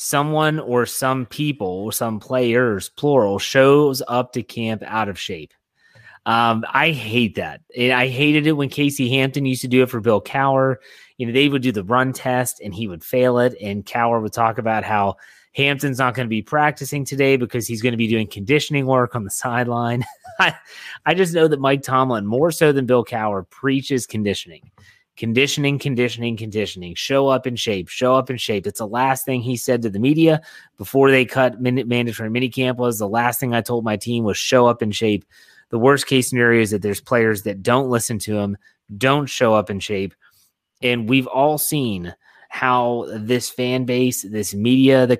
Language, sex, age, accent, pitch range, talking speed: English, male, 30-49, American, 110-130 Hz, 195 wpm